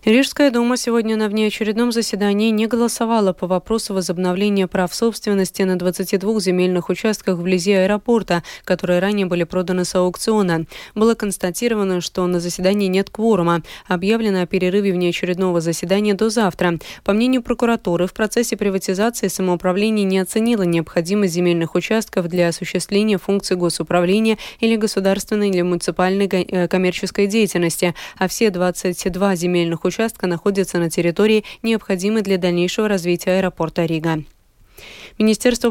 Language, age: Russian, 20-39